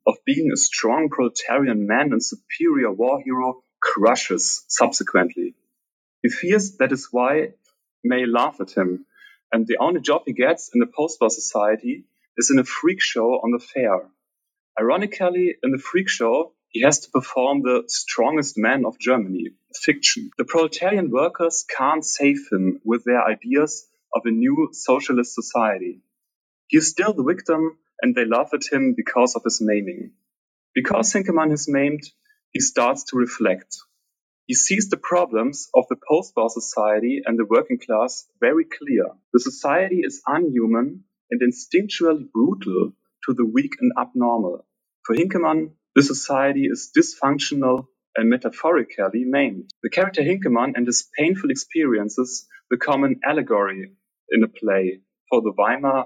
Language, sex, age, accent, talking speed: English, male, 30-49, German, 150 wpm